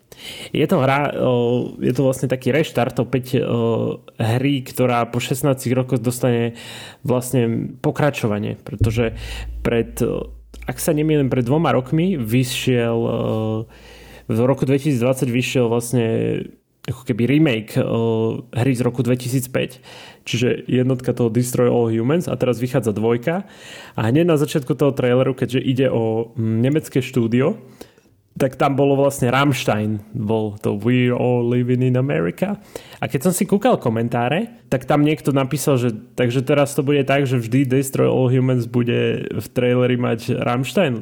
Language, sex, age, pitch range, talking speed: Slovak, male, 30-49, 115-140 Hz, 140 wpm